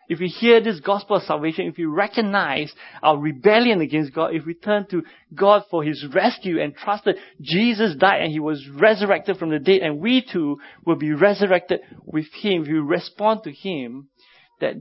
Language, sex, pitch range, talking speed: English, male, 150-195 Hz, 195 wpm